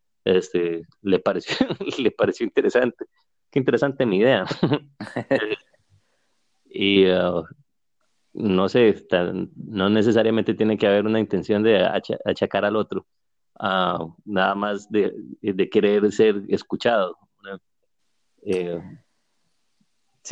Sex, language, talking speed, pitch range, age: male, Spanish, 105 wpm, 100-130 Hz, 30-49